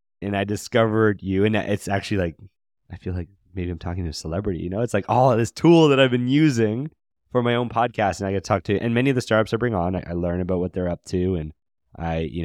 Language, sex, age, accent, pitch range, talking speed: English, male, 20-39, American, 85-110 Hz, 270 wpm